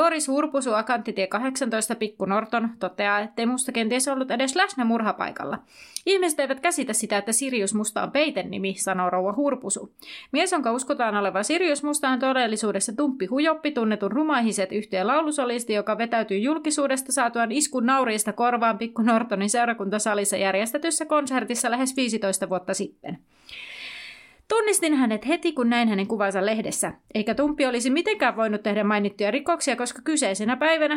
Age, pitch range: 30-49, 210-280 Hz